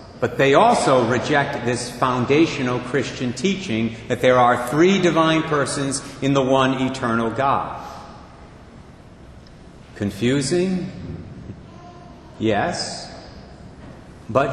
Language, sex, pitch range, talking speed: English, male, 120-170 Hz, 90 wpm